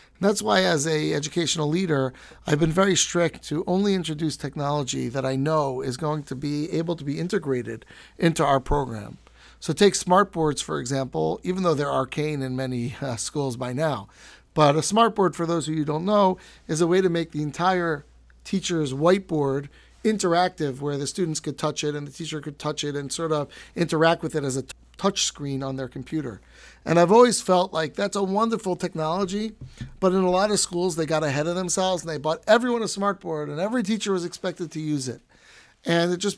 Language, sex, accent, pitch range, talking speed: English, male, American, 145-185 Hz, 215 wpm